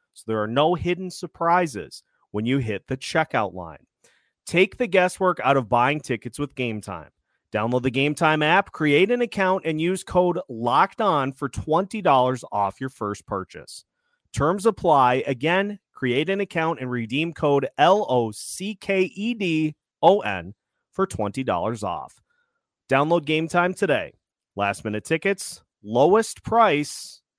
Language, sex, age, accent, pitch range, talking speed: English, male, 30-49, American, 120-170 Hz, 125 wpm